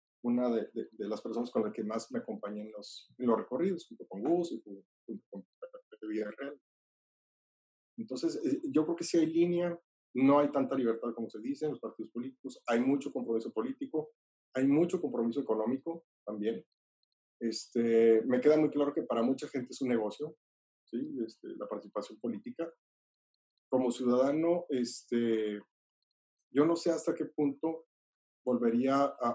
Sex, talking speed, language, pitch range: male, 160 wpm, Spanish, 115-160 Hz